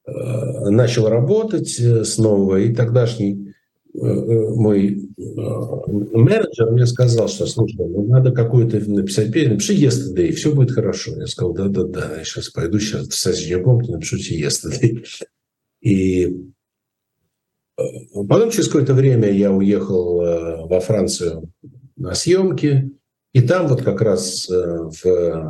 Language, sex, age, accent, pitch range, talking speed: Russian, male, 60-79, native, 100-135 Hz, 115 wpm